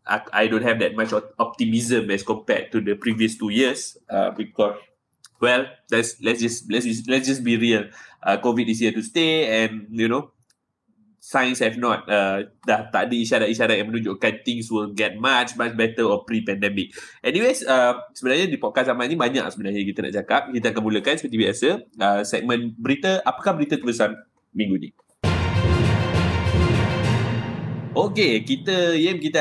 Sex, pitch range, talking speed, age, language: male, 105-120 Hz, 165 wpm, 20-39, Malay